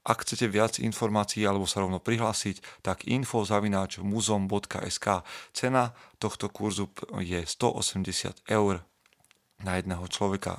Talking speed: 115 wpm